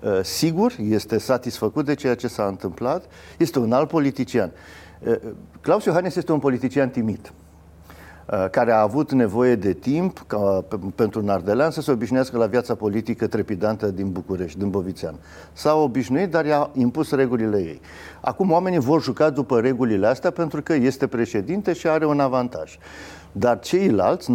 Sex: male